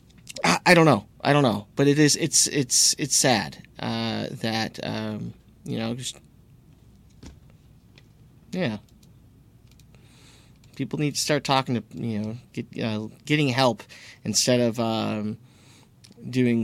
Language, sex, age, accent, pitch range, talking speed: English, male, 30-49, American, 115-140 Hz, 130 wpm